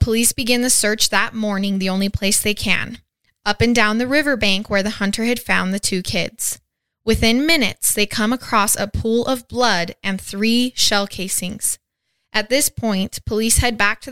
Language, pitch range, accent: English, 195-230 Hz, American